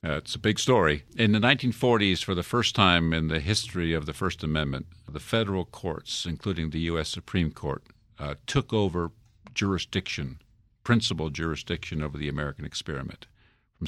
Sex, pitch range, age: male, 80-105 Hz, 50-69